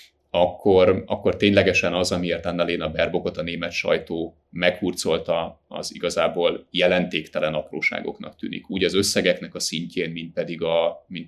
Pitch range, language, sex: 90-100 Hz, Hungarian, male